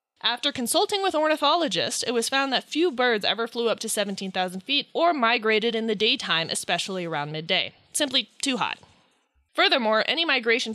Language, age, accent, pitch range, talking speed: English, 20-39, American, 200-280 Hz, 165 wpm